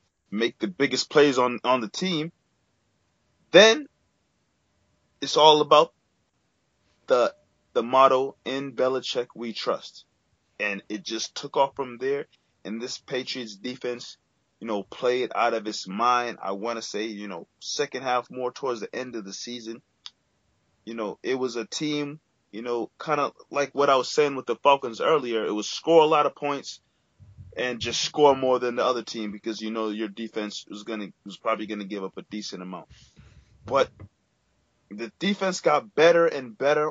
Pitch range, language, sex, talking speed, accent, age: 115-150 Hz, English, male, 175 wpm, American, 20-39